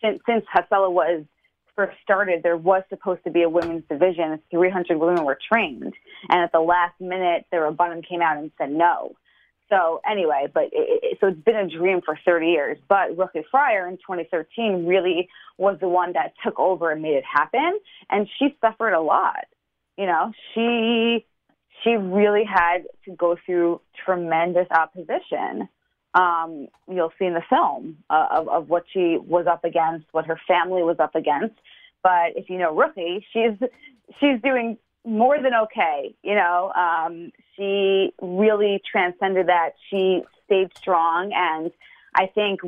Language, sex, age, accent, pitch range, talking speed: English, female, 20-39, American, 170-205 Hz, 165 wpm